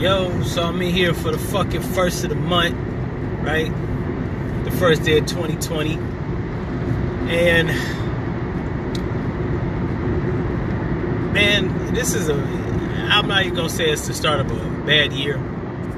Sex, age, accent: male, 30-49, American